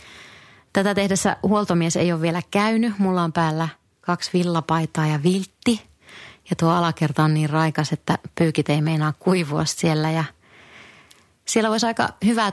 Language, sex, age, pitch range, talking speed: Finnish, female, 30-49, 160-190 Hz, 150 wpm